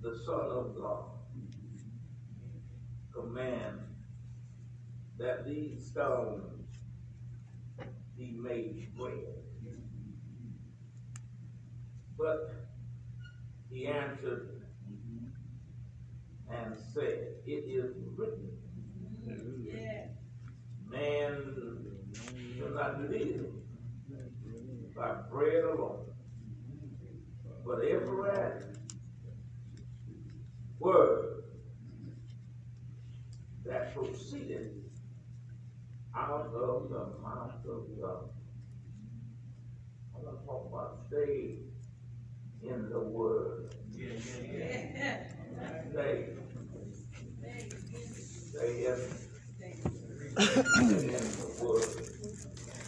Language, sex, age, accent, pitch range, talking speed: English, male, 60-79, American, 115-125 Hz, 60 wpm